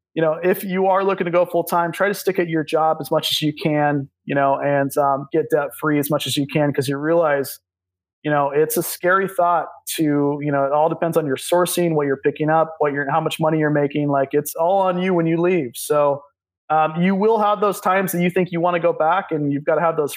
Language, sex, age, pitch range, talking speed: English, male, 20-39, 140-170 Hz, 270 wpm